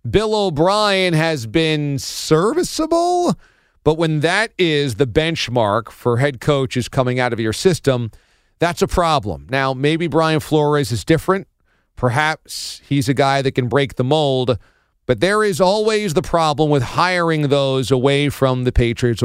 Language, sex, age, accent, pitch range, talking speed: English, male, 40-59, American, 130-160 Hz, 155 wpm